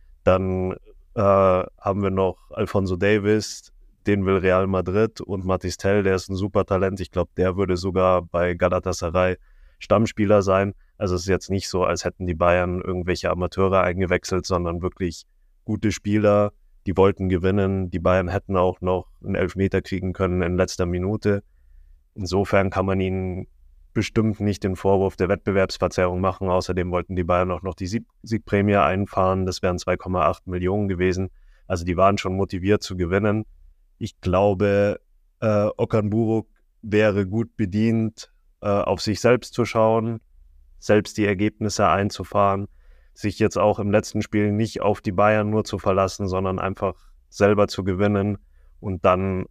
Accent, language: German, German